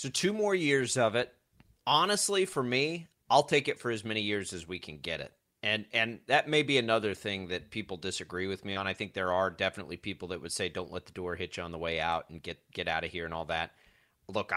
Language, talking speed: English, 260 wpm